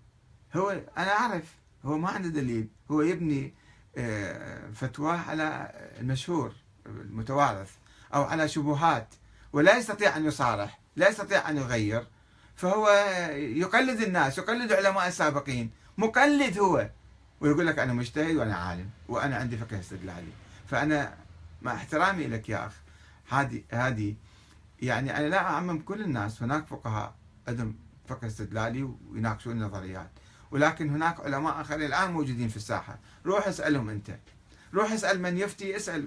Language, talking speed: Arabic, 130 wpm